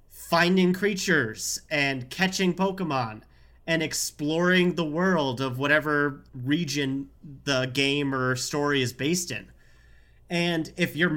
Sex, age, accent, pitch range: male, 30-49, American, 130-165 Hz